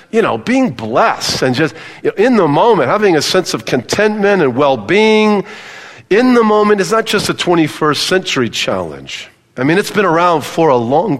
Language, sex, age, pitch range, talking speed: English, male, 50-69, 140-185 Hz, 195 wpm